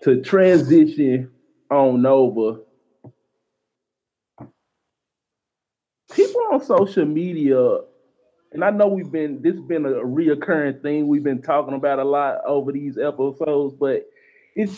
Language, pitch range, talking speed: English, 125-165 Hz, 120 wpm